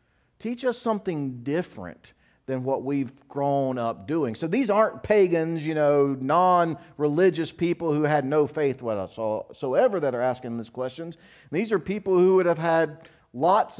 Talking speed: 155 wpm